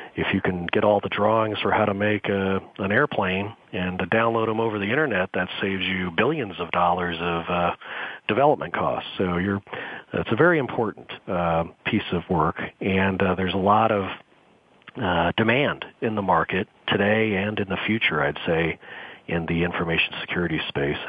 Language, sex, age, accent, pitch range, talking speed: English, male, 40-59, American, 85-105 Hz, 180 wpm